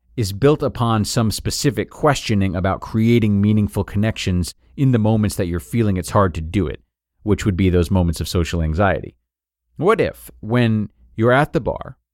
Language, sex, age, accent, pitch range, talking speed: English, male, 40-59, American, 95-130 Hz, 180 wpm